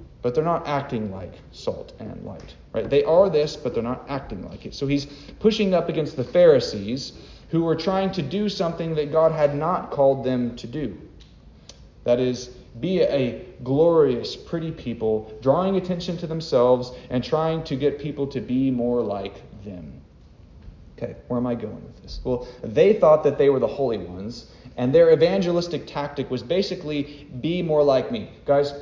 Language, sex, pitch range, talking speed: English, male, 120-165 Hz, 180 wpm